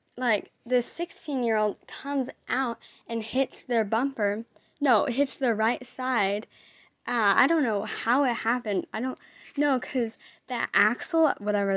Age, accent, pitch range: 10-29, American, 215-265 Hz